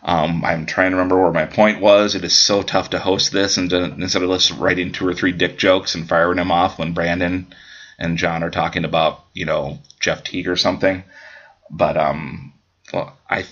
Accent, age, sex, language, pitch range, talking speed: American, 30-49, male, English, 85-95 Hz, 210 wpm